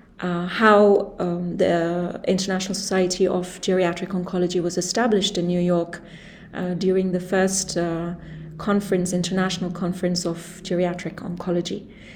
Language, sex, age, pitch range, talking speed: English, female, 30-49, 175-205 Hz, 125 wpm